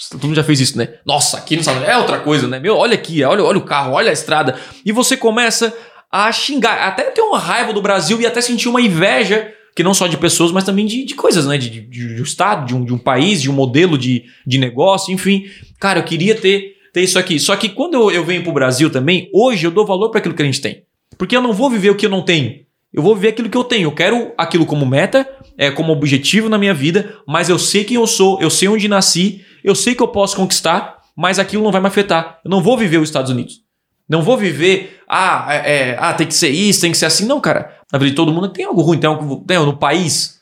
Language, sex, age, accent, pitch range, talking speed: Portuguese, male, 20-39, Brazilian, 145-200 Hz, 270 wpm